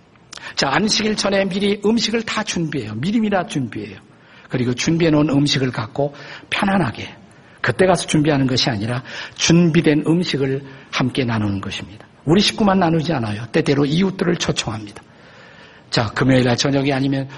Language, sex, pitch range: Korean, male, 120-180 Hz